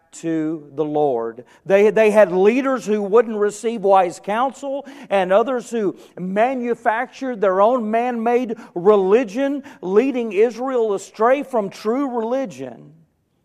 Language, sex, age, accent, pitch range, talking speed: English, male, 40-59, American, 145-210 Hz, 115 wpm